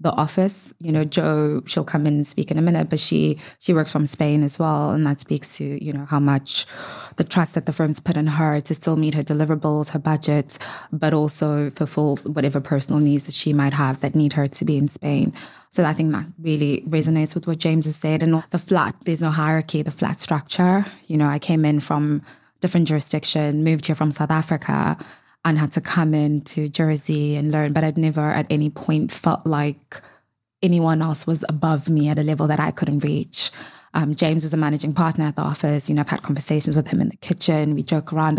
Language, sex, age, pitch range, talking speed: English, female, 20-39, 150-165 Hz, 225 wpm